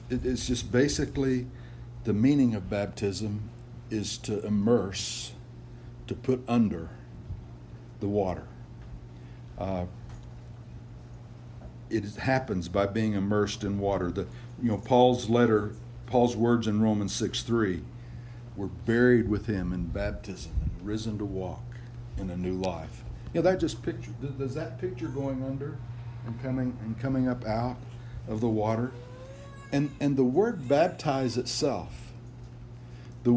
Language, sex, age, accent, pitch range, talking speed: English, male, 60-79, American, 110-130 Hz, 135 wpm